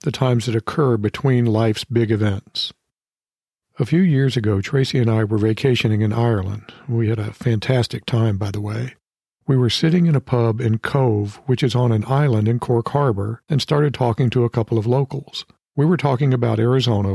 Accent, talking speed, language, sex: American, 195 wpm, English, male